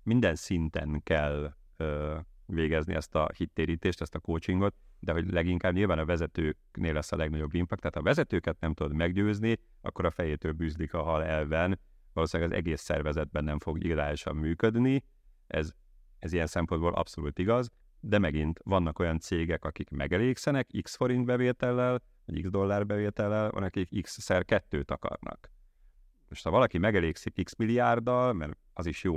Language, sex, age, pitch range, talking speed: Hungarian, male, 30-49, 80-105 Hz, 160 wpm